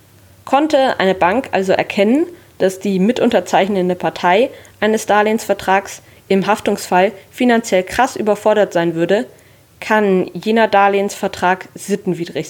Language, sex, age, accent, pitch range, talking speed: German, female, 20-39, German, 165-215 Hz, 105 wpm